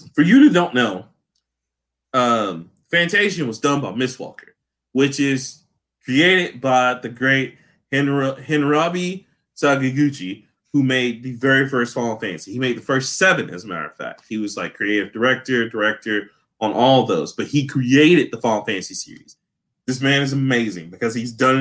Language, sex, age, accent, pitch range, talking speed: English, male, 20-39, American, 130-180 Hz, 170 wpm